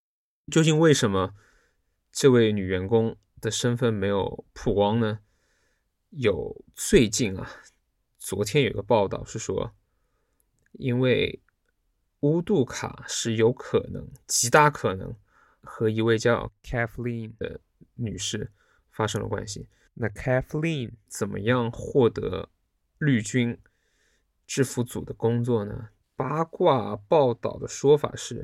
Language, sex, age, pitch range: Chinese, male, 20-39, 100-125 Hz